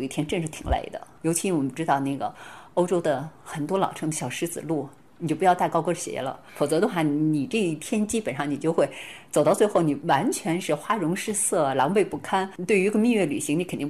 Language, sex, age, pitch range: Chinese, female, 30-49, 145-195 Hz